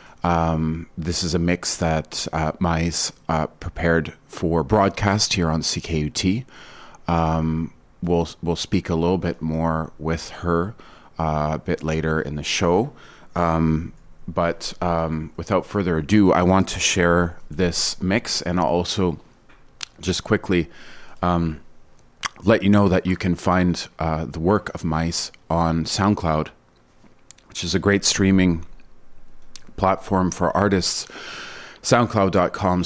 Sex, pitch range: male, 80-95 Hz